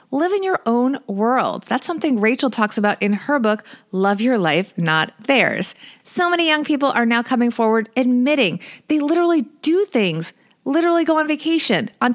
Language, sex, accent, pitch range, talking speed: English, female, American, 220-280 Hz, 180 wpm